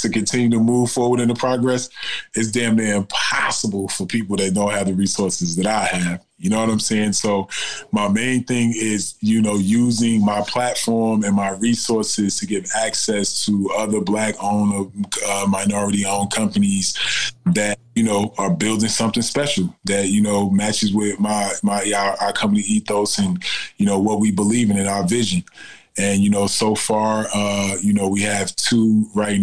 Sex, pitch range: male, 100-110 Hz